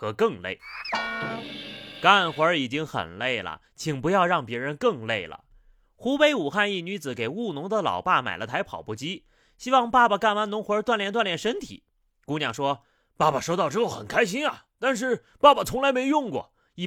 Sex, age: male, 30-49